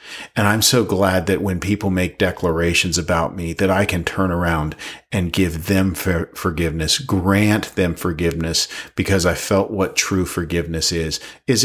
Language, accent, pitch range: English, American, 90-110 Hz